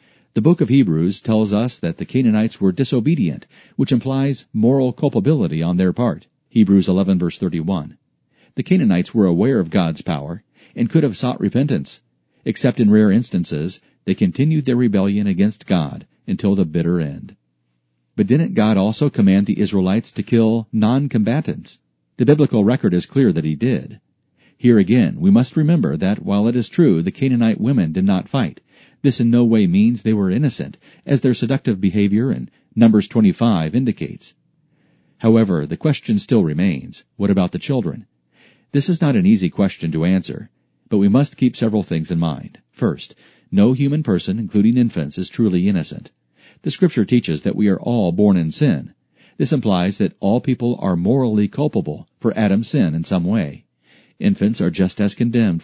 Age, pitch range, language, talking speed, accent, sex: 50-69, 95-135 Hz, English, 175 wpm, American, male